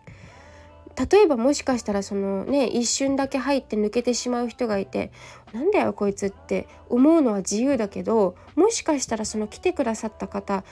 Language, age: Japanese, 20-39